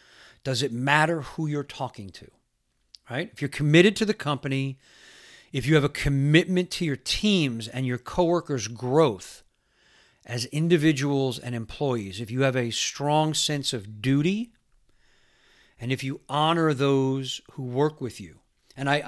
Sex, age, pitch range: male, 40-59, 125-155 Hz